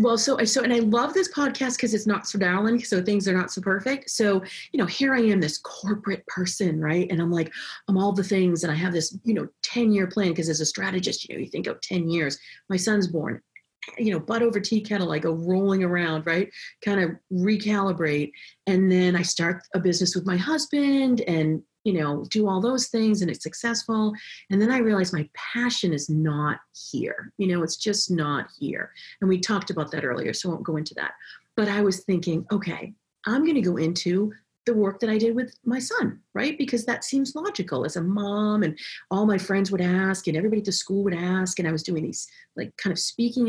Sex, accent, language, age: female, American, English, 30-49